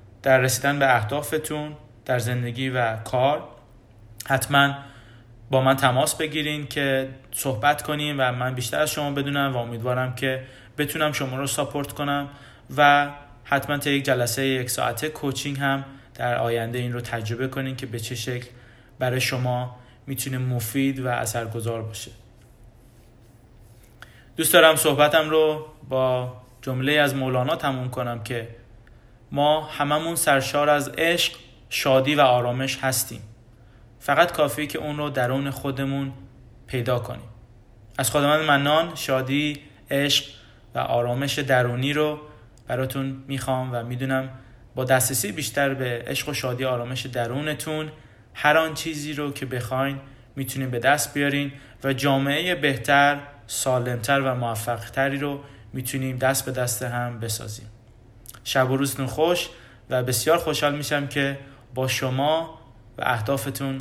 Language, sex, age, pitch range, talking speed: Persian, male, 20-39, 120-145 Hz, 135 wpm